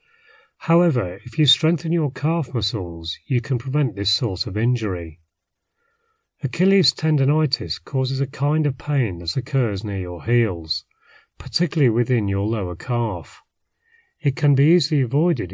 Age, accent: 30-49, British